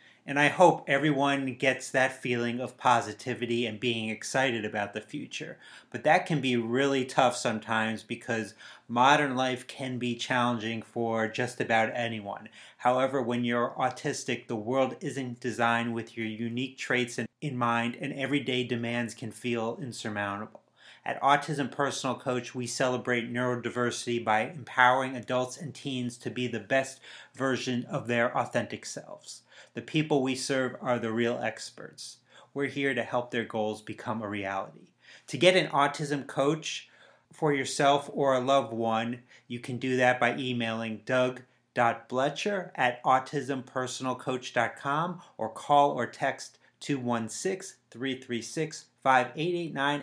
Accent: American